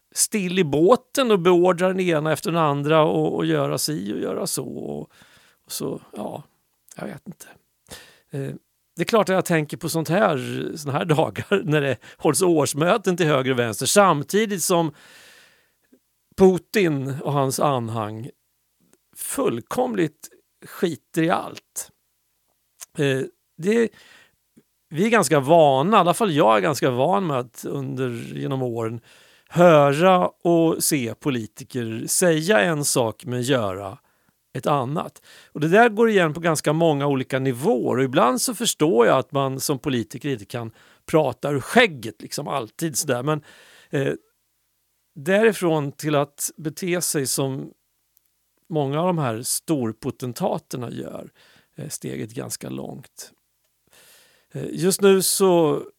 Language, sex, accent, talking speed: Swedish, male, native, 135 wpm